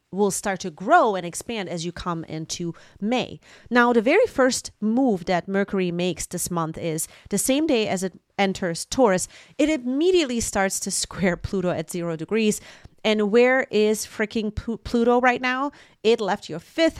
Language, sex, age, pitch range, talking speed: English, female, 30-49, 175-230 Hz, 175 wpm